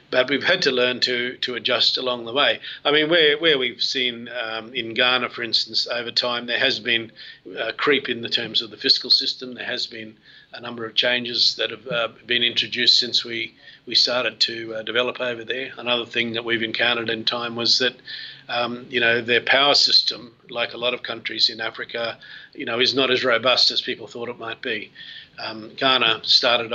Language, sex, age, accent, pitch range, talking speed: English, male, 50-69, Australian, 115-130 Hz, 210 wpm